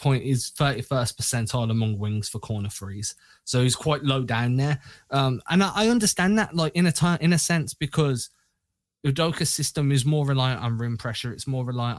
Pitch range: 125-155 Hz